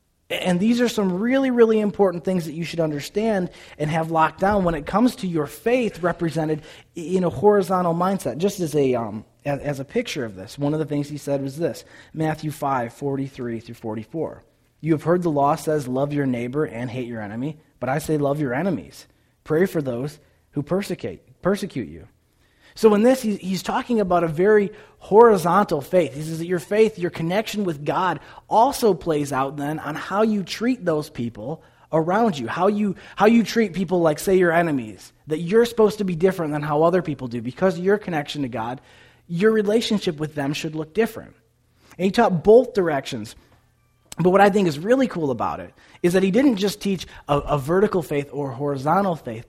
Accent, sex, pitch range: American, male, 140-195 Hz